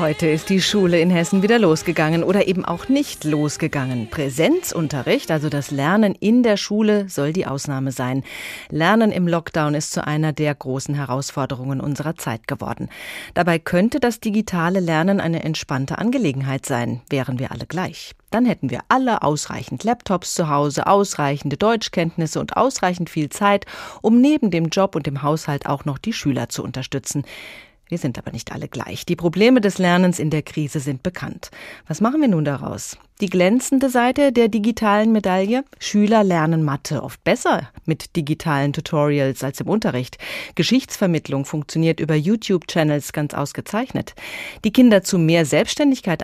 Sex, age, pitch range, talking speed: female, 30-49, 145-200 Hz, 160 wpm